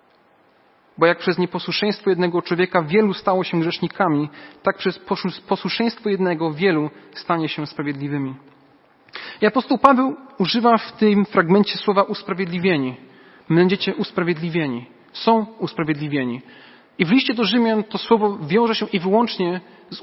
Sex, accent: male, native